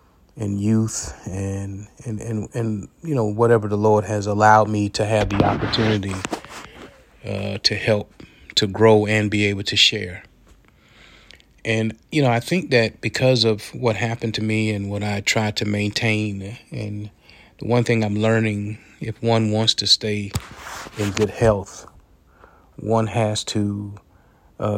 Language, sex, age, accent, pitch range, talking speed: English, male, 30-49, American, 105-115 Hz, 155 wpm